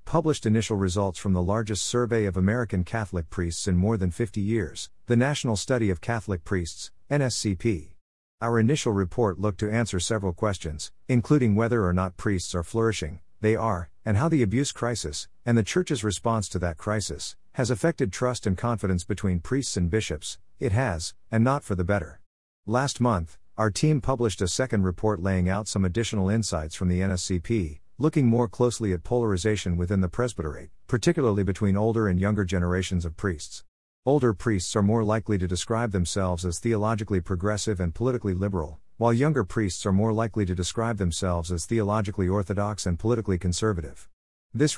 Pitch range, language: 90-115 Hz, English